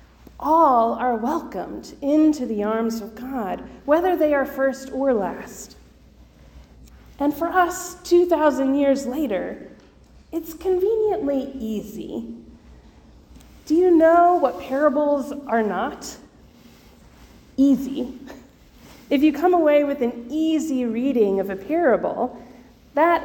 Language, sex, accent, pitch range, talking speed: English, female, American, 245-315 Hz, 110 wpm